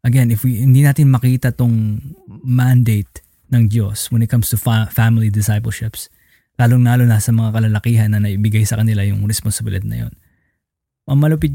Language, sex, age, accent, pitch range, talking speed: Filipino, male, 20-39, native, 110-145 Hz, 160 wpm